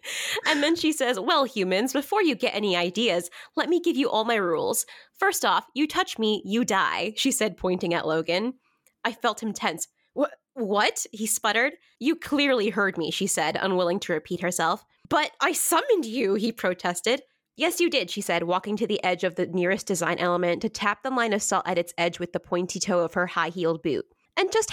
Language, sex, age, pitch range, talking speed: English, female, 20-39, 185-275 Hz, 210 wpm